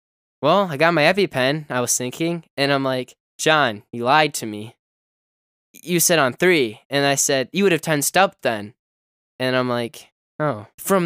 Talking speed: 185 wpm